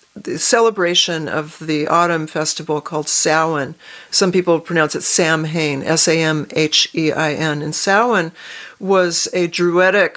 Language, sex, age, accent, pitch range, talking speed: English, female, 50-69, American, 160-195 Hz, 110 wpm